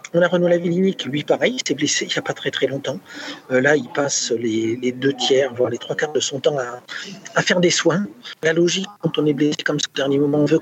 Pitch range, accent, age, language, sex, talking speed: 145-175 Hz, French, 50-69, French, male, 270 wpm